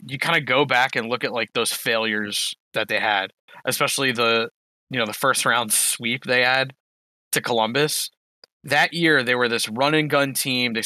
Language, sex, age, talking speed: English, male, 20-39, 200 wpm